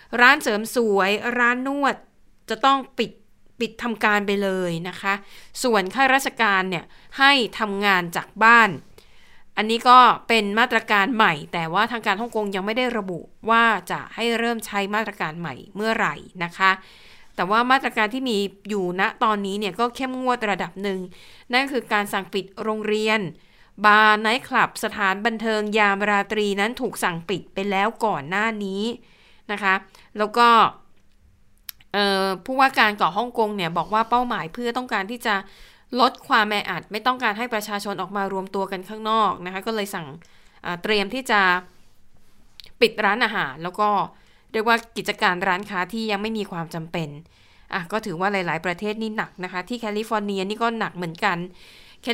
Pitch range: 195-230 Hz